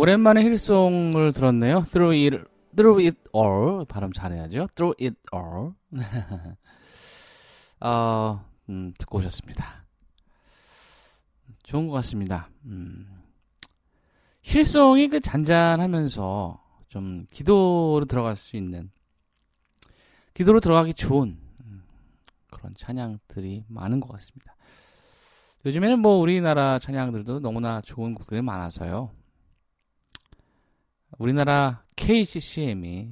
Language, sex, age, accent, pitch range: Korean, male, 20-39, native, 95-160 Hz